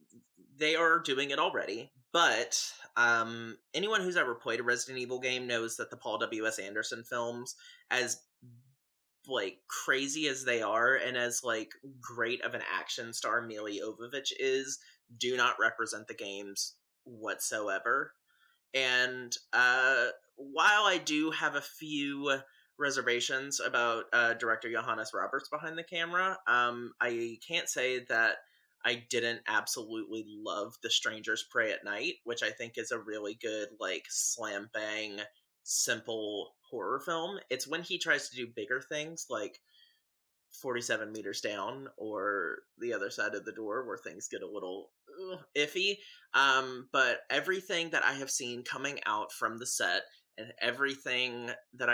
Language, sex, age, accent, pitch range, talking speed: English, male, 30-49, American, 120-180 Hz, 150 wpm